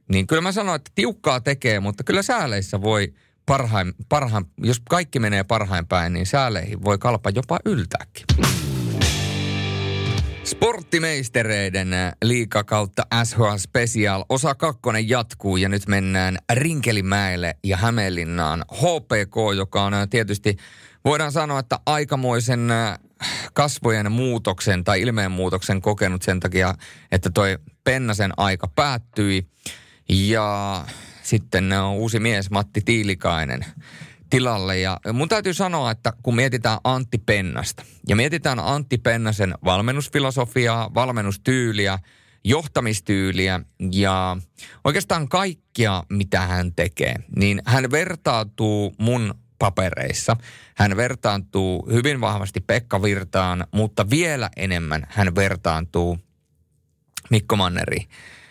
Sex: male